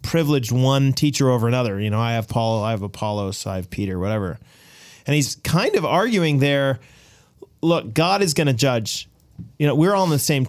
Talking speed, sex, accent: 205 wpm, male, American